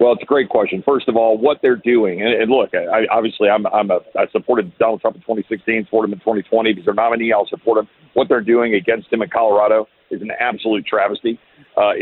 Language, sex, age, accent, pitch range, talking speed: English, male, 50-69, American, 110-135 Hz, 240 wpm